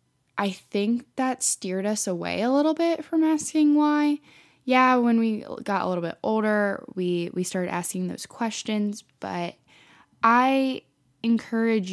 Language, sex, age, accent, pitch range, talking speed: English, female, 10-29, American, 170-215 Hz, 145 wpm